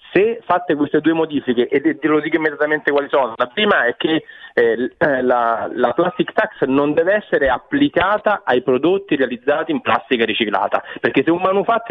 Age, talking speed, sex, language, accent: 30-49, 175 wpm, male, Italian, native